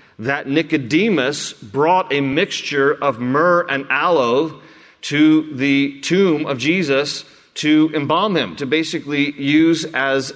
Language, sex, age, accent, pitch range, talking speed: English, male, 40-59, American, 130-160 Hz, 120 wpm